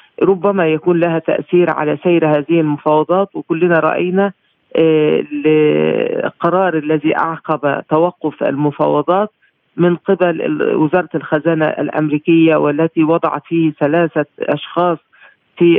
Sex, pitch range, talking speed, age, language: female, 150-170 Hz, 105 wpm, 50-69, Arabic